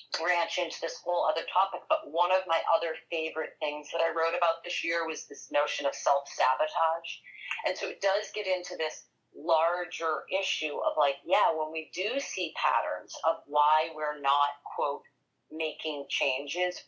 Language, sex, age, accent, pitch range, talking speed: English, female, 40-59, American, 155-185 Hz, 170 wpm